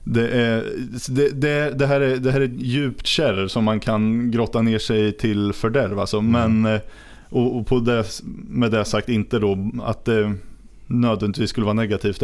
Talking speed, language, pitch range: 170 wpm, Swedish, 100-115 Hz